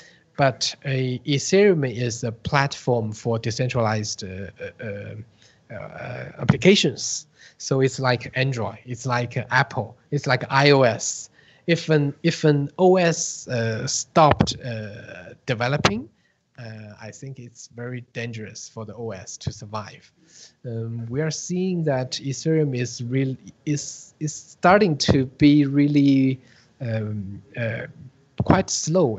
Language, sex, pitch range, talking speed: English, male, 110-140 Hz, 125 wpm